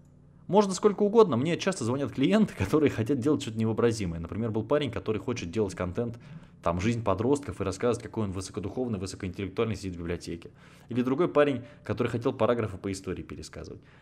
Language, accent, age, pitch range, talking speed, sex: Russian, native, 20-39, 100-145 Hz, 170 wpm, male